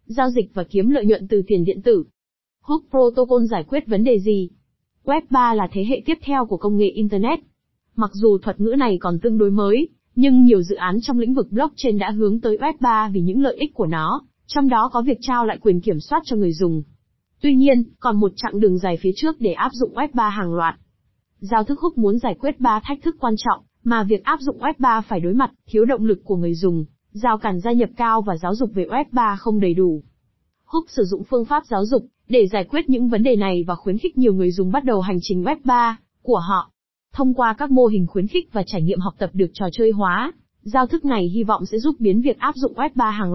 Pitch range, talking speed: 195-260 Hz, 240 wpm